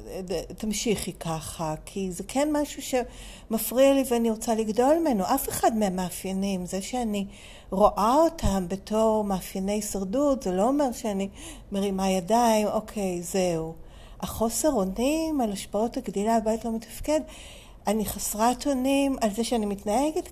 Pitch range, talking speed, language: 195-250 Hz, 135 wpm, Hebrew